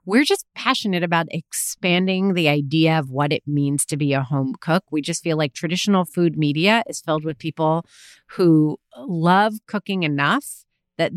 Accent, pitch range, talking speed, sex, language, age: American, 160-230 Hz, 170 wpm, female, English, 30-49